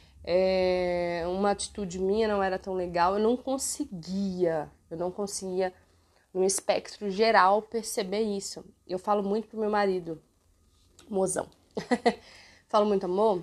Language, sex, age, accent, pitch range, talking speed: Portuguese, female, 20-39, Brazilian, 185-235 Hz, 130 wpm